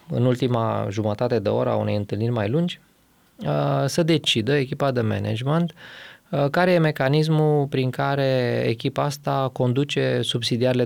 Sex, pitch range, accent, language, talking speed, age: male, 115-160 Hz, native, Romanian, 135 wpm, 20-39